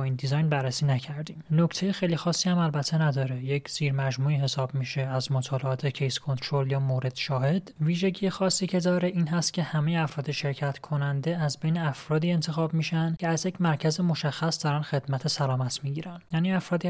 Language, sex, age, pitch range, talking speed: Persian, male, 30-49, 140-165 Hz, 170 wpm